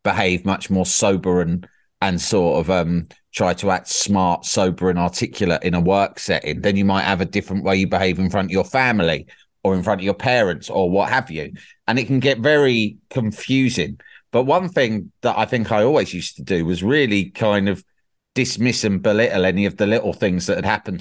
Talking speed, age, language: 215 wpm, 30-49, English